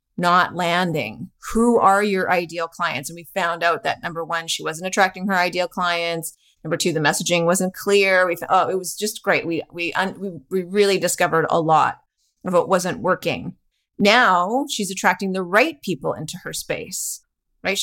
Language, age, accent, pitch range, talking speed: English, 30-49, American, 175-205 Hz, 190 wpm